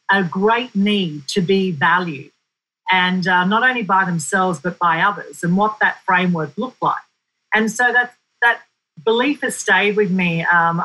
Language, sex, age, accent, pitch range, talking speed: English, female, 40-59, Australian, 180-205 Hz, 165 wpm